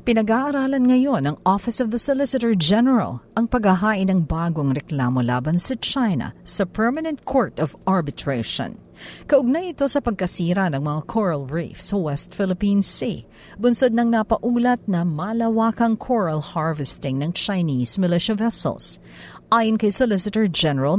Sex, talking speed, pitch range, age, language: female, 135 wpm, 150-230 Hz, 50-69, Filipino